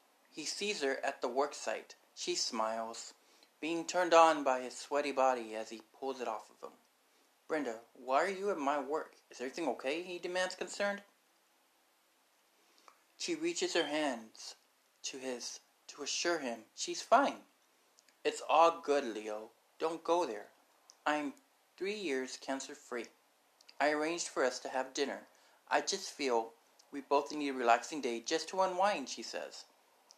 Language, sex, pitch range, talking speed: English, male, 130-170 Hz, 160 wpm